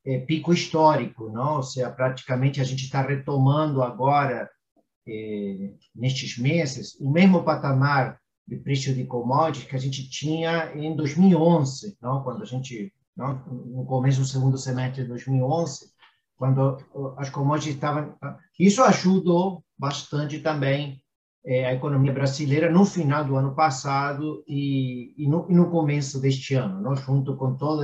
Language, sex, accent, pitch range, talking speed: Portuguese, male, Brazilian, 130-165 Hz, 145 wpm